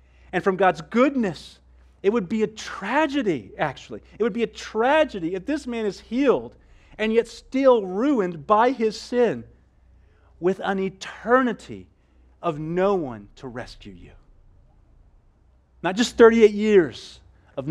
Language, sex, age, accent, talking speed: English, male, 40-59, American, 140 wpm